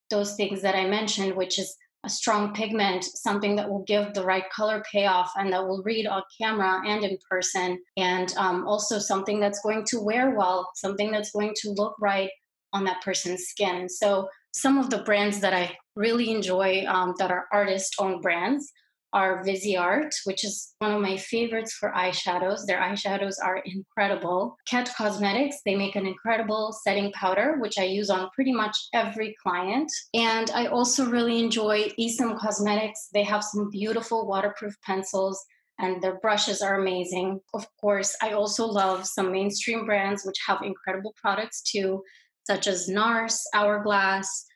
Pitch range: 190-215 Hz